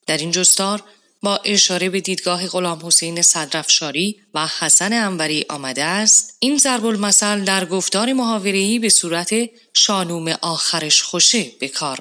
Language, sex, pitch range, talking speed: Persian, female, 165-205 Hz, 140 wpm